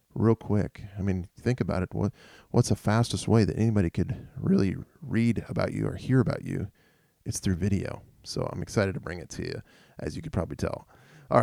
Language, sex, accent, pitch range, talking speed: English, male, American, 95-120 Hz, 210 wpm